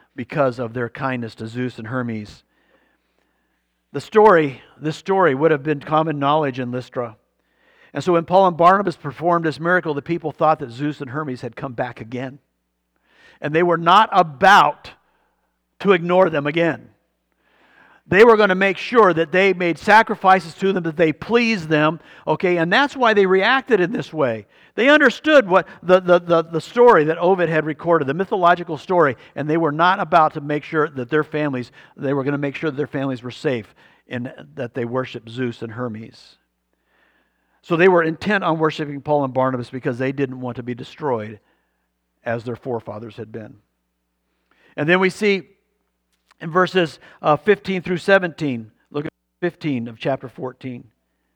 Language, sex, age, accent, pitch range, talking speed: English, male, 50-69, American, 125-175 Hz, 180 wpm